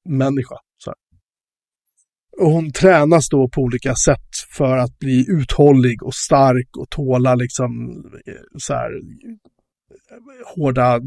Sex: male